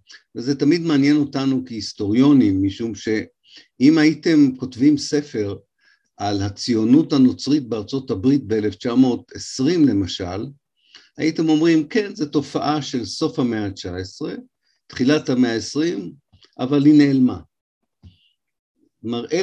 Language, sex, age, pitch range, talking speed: Hebrew, male, 50-69, 105-145 Hz, 100 wpm